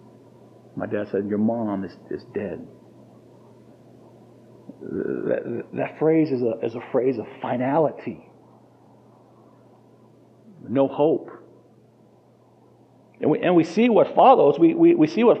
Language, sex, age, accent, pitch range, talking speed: English, male, 40-59, American, 130-195 Hz, 115 wpm